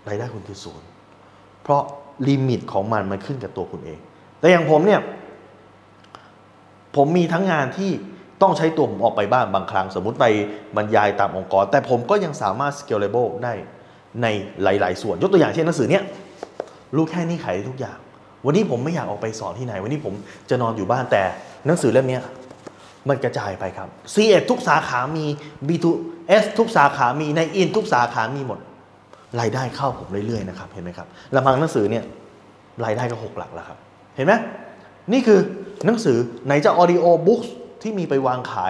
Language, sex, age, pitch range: Thai, male, 20-39, 105-160 Hz